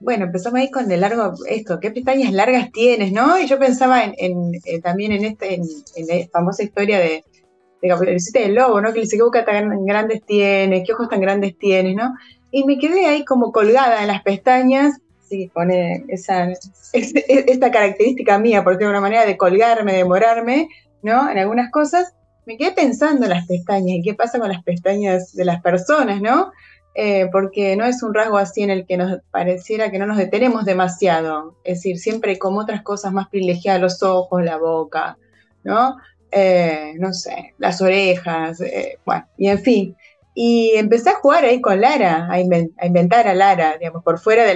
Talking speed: 195 wpm